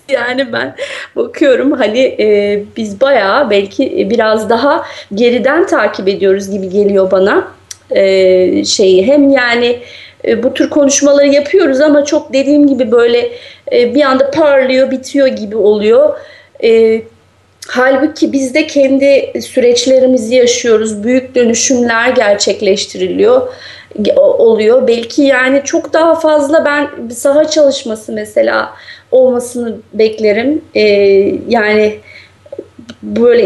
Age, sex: 30-49, female